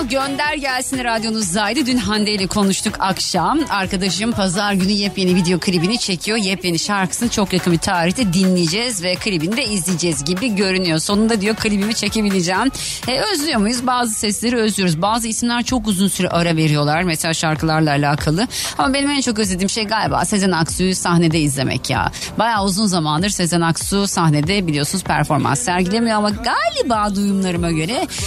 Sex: female